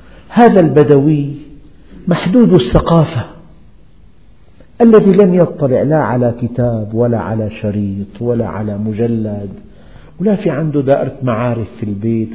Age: 50-69